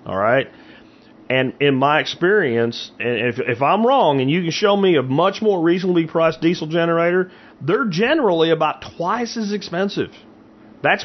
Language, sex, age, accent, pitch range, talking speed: English, male, 40-59, American, 115-160 Hz, 165 wpm